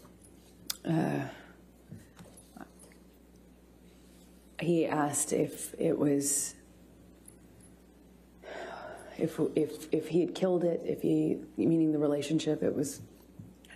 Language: English